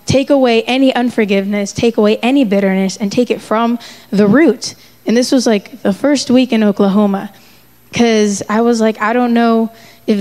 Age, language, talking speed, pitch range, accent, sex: 20-39, English, 180 wpm, 210-250 Hz, American, female